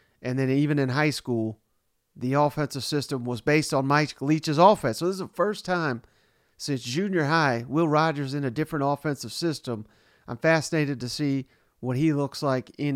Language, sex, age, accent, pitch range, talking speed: English, male, 40-59, American, 130-155 Hz, 185 wpm